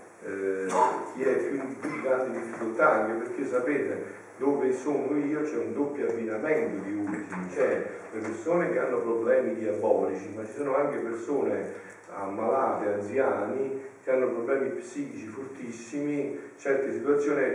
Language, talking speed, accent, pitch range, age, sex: Italian, 140 wpm, native, 115-155 Hz, 50-69, male